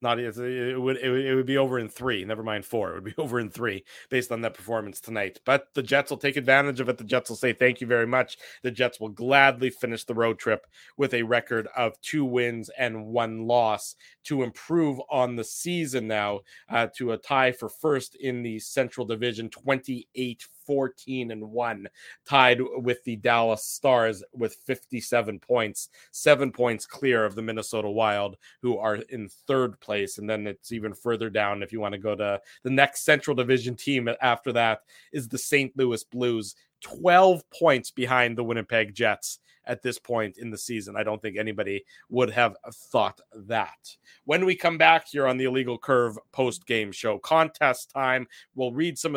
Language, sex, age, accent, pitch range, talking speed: English, male, 30-49, American, 115-135 Hz, 195 wpm